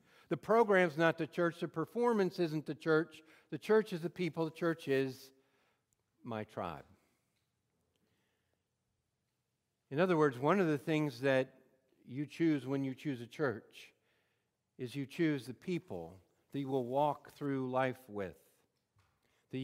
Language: English